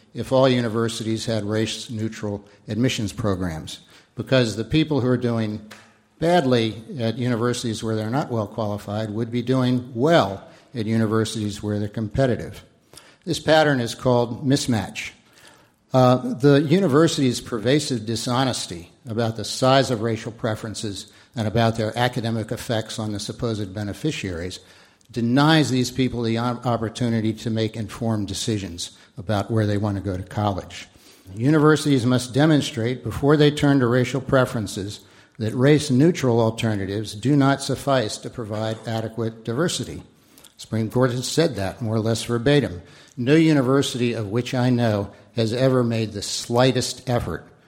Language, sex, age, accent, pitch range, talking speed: English, male, 60-79, American, 105-125 Hz, 140 wpm